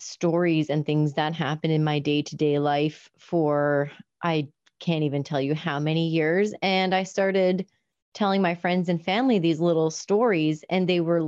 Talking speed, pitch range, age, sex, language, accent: 170 wpm, 155-195 Hz, 30-49, female, English, American